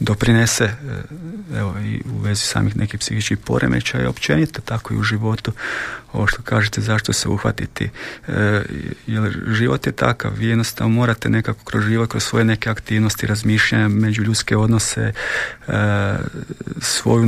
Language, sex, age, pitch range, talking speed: Croatian, male, 40-59, 110-120 Hz, 145 wpm